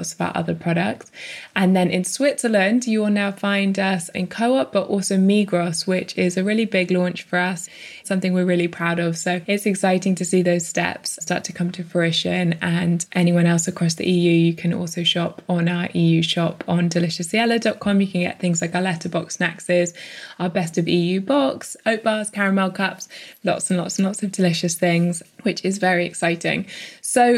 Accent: British